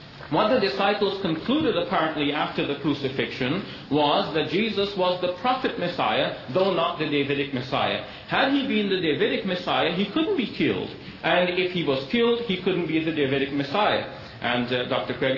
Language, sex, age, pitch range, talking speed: English, male, 40-59, 130-195 Hz, 175 wpm